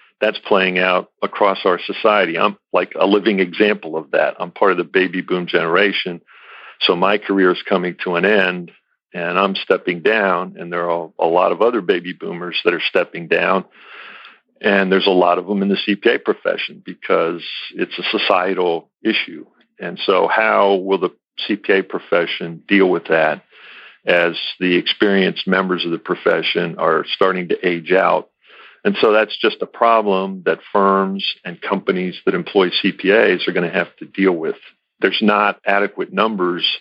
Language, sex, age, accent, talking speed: English, male, 50-69, American, 175 wpm